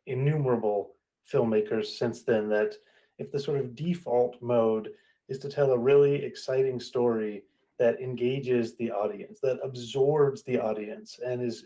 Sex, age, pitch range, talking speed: male, 30-49, 120-170 Hz, 145 wpm